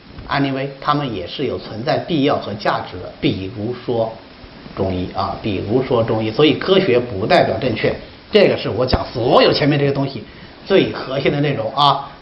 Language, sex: Chinese, male